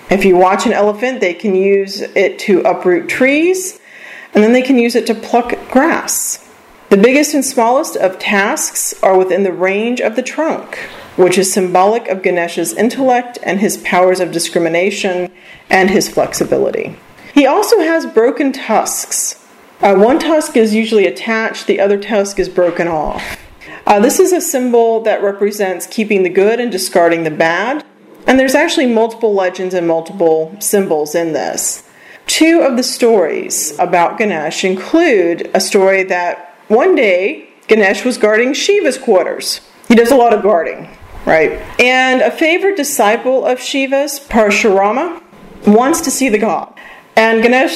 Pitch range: 185-255 Hz